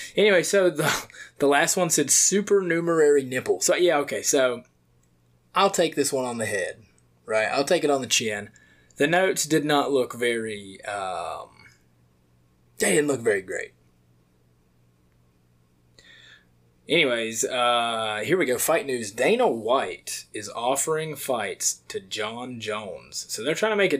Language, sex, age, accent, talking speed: English, male, 20-39, American, 150 wpm